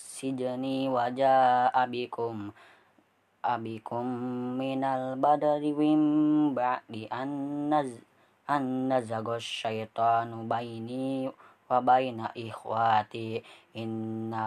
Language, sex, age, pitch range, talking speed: Indonesian, female, 20-39, 115-135 Hz, 70 wpm